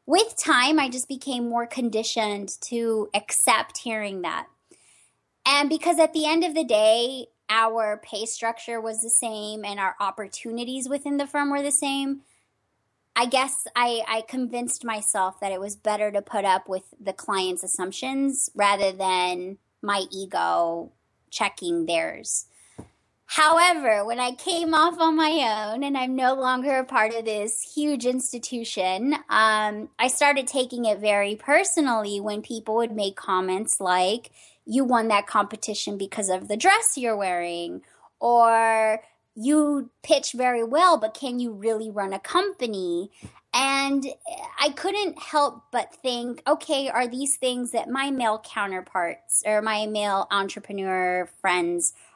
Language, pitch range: English, 205-275 Hz